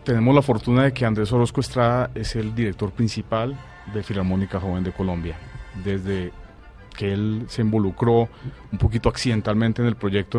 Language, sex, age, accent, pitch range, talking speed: Spanish, male, 30-49, Colombian, 95-120 Hz, 160 wpm